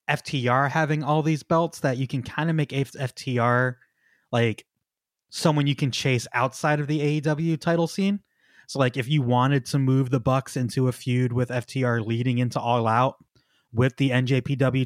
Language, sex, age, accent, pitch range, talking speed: English, male, 20-39, American, 120-145 Hz, 180 wpm